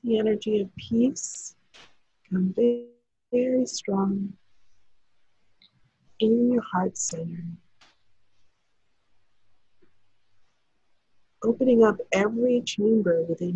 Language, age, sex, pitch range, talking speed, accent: English, 50-69, female, 175-220 Hz, 70 wpm, American